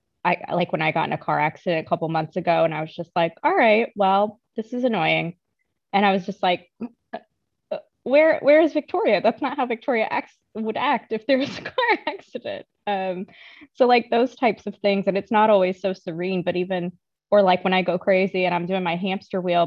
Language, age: English, 20-39